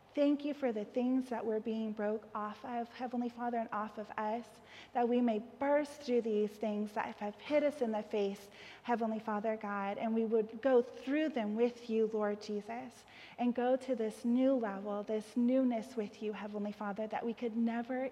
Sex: female